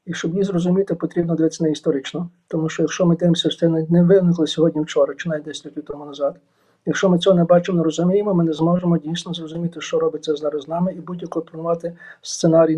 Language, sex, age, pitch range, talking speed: Ukrainian, male, 50-69, 160-185 Hz, 210 wpm